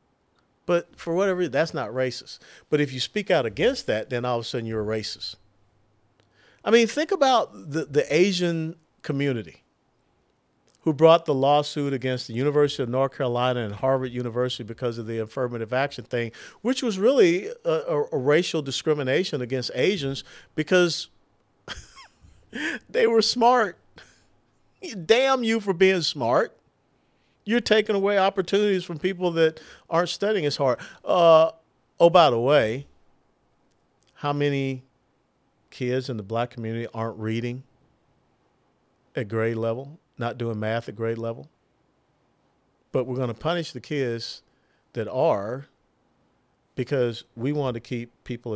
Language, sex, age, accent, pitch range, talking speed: English, male, 50-69, American, 115-165 Hz, 145 wpm